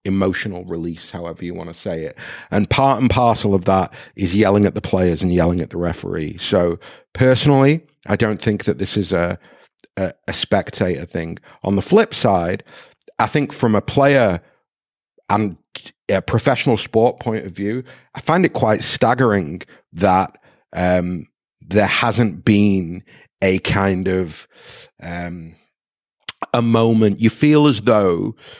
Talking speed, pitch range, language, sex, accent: 155 wpm, 95-125 Hz, English, male, British